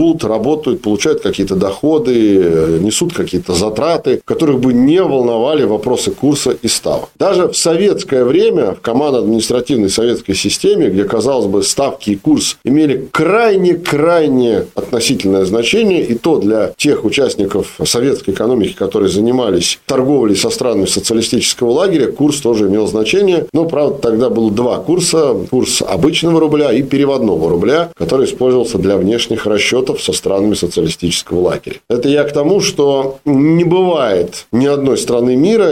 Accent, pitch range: native, 110-155 Hz